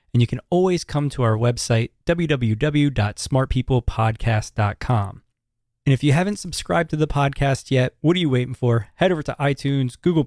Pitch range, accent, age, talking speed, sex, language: 115-155 Hz, American, 20-39, 165 wpm, male, English